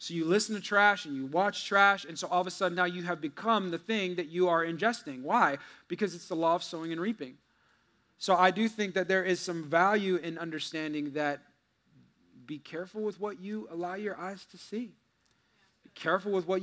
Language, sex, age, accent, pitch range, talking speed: English, male, 30-49, American, 165-210 Hz, 215 wpm